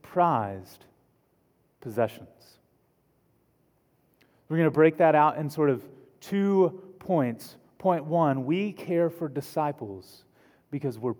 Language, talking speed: English, 105 wpm